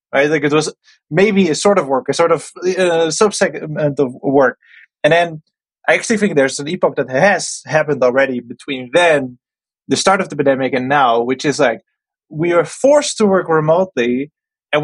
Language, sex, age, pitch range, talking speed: English, male, 20-39, 135-175 Hz, 190 wpm